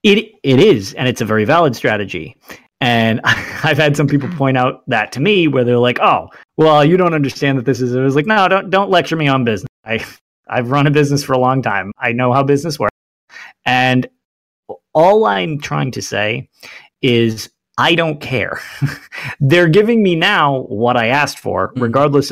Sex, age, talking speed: male, 30-49, 195 wpm